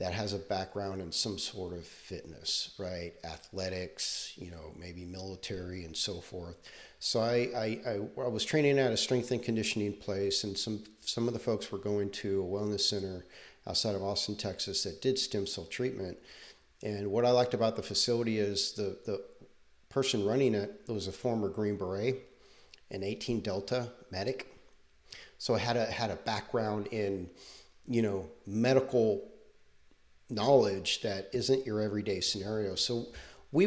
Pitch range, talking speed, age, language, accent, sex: 95-110 Hz, 165 wpm, 40-59, English, American, male